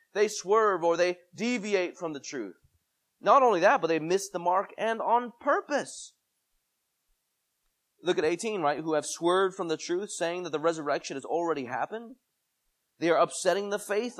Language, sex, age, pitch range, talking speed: English, male, 30-49, 135-200 Hz, 175 wpm